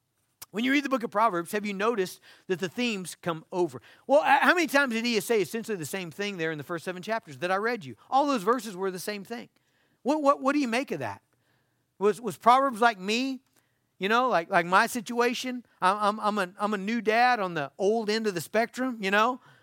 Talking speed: 240 wpm